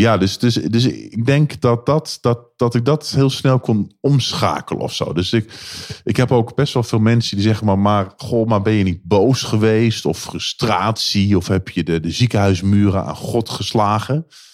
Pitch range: 95-120 Hz